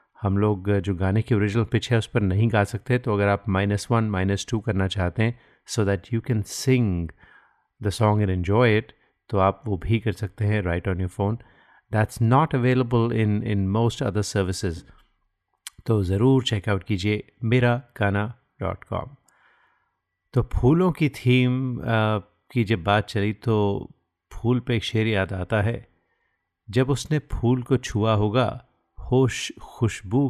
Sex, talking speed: male, 155 wpm